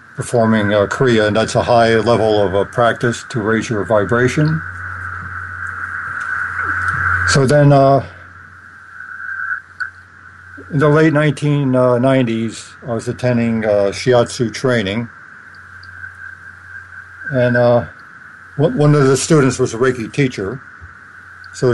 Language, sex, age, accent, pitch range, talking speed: English, male, 60-79, American, 105-150 Hz, 110 wpm